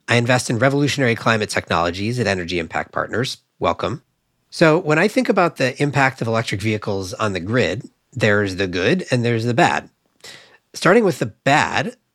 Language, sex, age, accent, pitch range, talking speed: English, male, 40-59, American, 95-135 Hz, 175 wpm